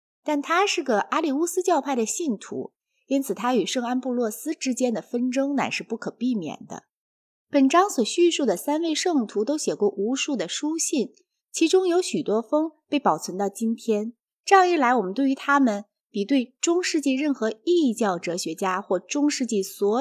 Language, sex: Chinese, female